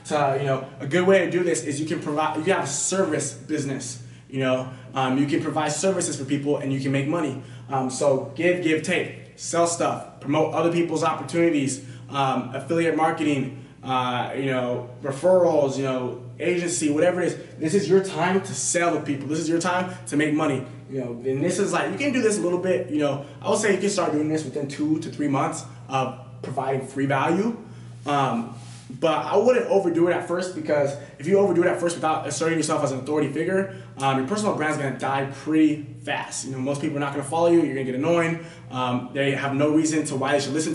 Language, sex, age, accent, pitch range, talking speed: English, male, 20-39, American, 135-165 Hz, 235 wpm